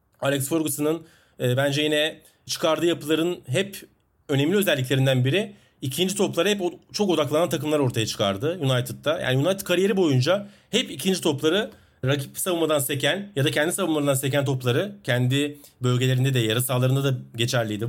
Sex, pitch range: male, 140-185 Hz